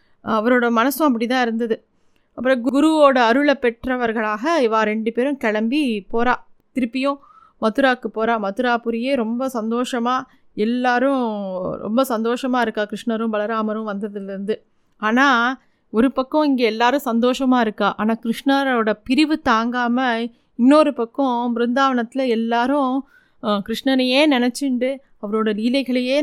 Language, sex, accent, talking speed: Tamil, female, native, 110 wpm